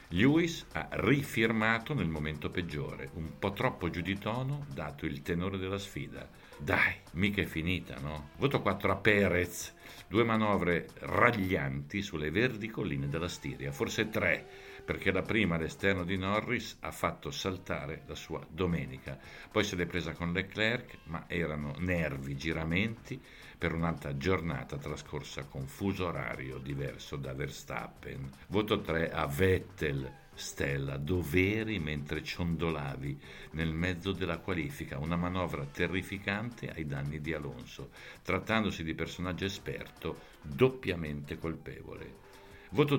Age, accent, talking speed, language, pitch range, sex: 60-79, native, 130 wpm, Italian, 80-100 Hz, male